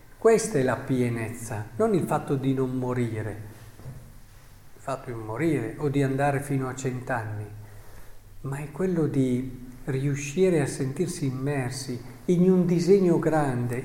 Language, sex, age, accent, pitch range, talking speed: Italian, male, 50-69, native, 125-170 Hz, 140 wpm